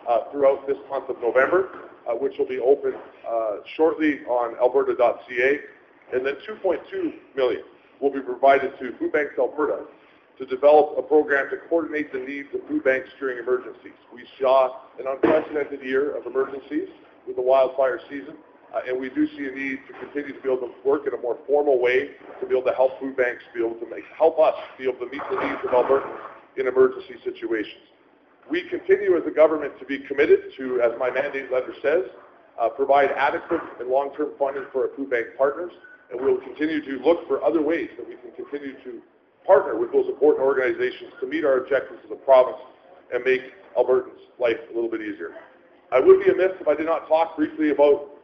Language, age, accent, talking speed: English, 40-59, American, 200 wpm